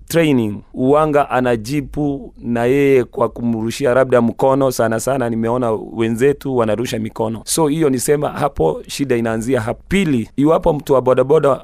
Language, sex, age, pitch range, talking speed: Swahili, male, 30-49, 120-145 Hz, 140 wpm